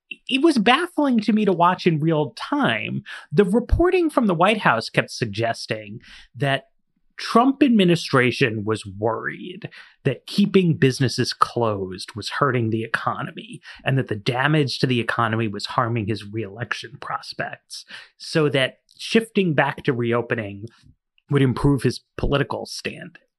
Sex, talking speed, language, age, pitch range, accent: male, 140 wpm, English, 30-49, 120-205 Hz, American